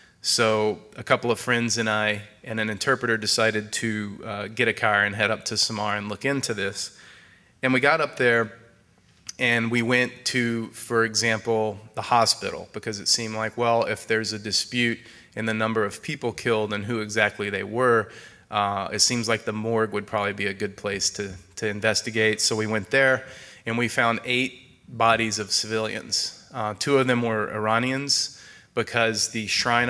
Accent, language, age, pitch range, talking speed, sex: American, English, 30-49, 105-115 Hz, 185 wpm, male